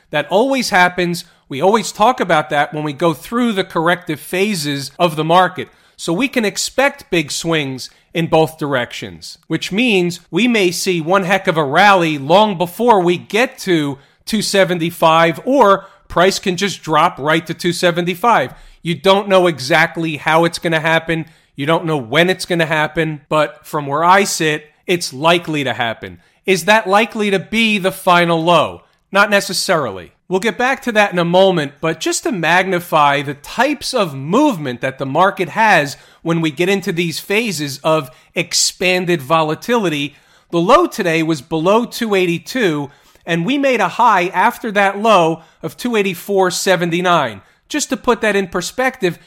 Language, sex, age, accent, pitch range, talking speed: English, male, 40-59, American, 160-200 Hz, 170 wpm